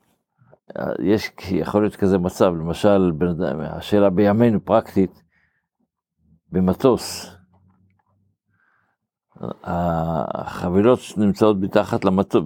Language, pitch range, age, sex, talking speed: Hebrew, 90-105 Hz, 60-79, male, 65 wpm